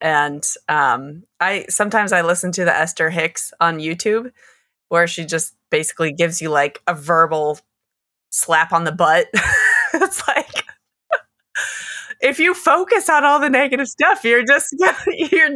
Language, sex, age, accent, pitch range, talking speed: English, female, 20-39, American, 165-245 Hz, 145 wpm